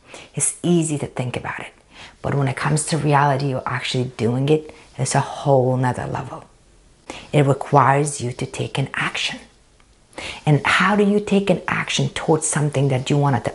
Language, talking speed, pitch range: English, 180 wpm, 130-155 Hz